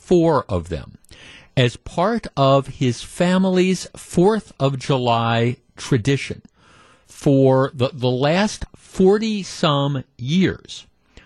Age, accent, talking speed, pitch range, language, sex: 50-69, American, 100 wpm, 120-170 Hz, English, male